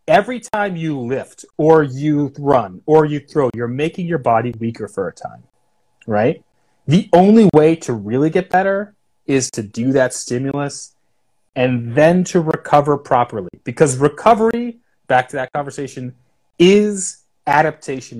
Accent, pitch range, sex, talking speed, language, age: American, 130-175 Hz, male, 145 wpm, English, 30-49